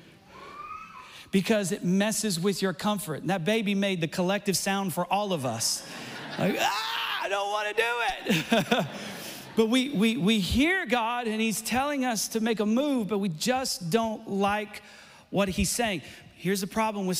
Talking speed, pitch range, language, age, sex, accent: 180 wpm, 155-205 Hz, English, 40-59, male, American